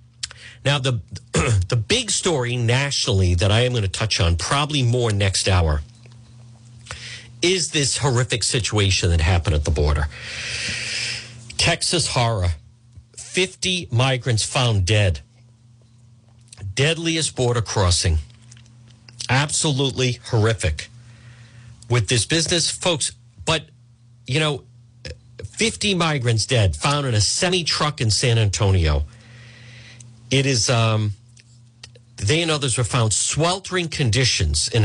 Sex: male